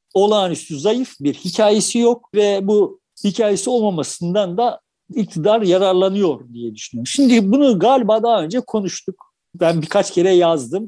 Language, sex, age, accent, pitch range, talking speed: Turkish, male, 60-79, native, 170-235 Hz, 130 wpm